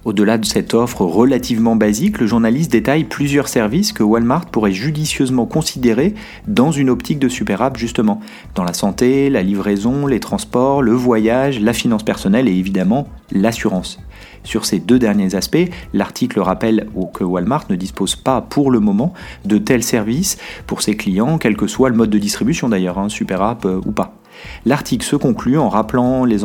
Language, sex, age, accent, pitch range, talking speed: French, male, 40-59, French, 105-145 Hz, 175 wpm